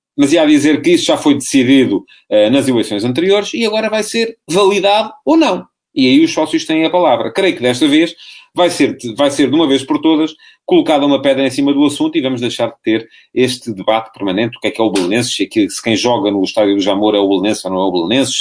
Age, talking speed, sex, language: 40-59, 250 wpm, male, English